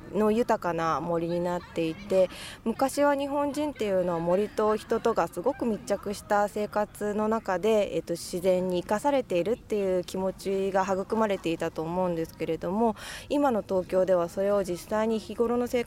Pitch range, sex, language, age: 175-240 Hz, female, Japanese, 20-39